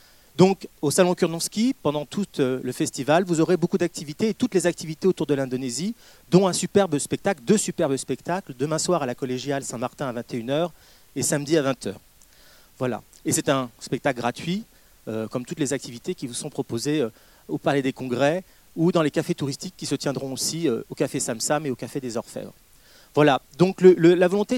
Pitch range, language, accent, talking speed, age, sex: 135-175 Hz, French, French, 200 wpm, 30-49, male